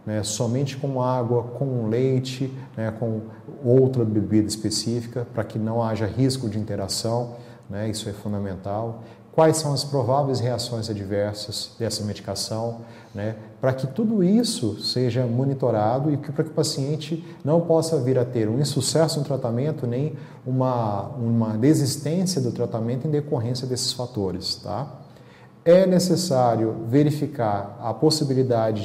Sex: male